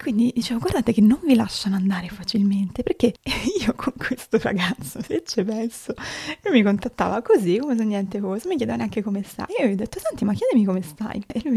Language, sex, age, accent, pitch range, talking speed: Italian, female, 20-39, native, 200-235 Hz, 220 wpm